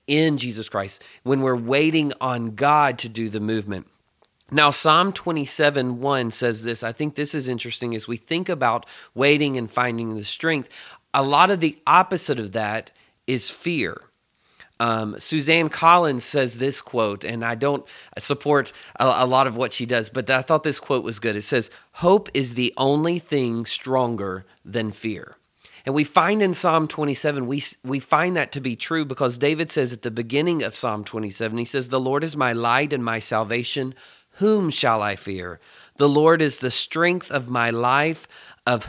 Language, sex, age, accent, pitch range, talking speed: English, male, 30-49, American, 115-150 Hz, 185 wpm